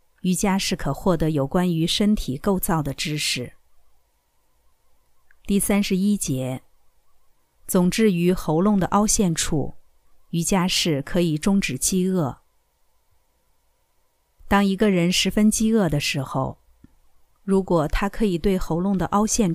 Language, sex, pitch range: Chinese, female, 150-205 Hz